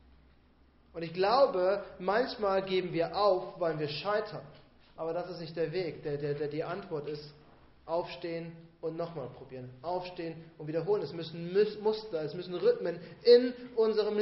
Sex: male